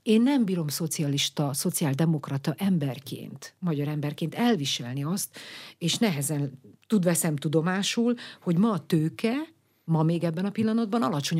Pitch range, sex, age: 150-210 Hz, female, 50-69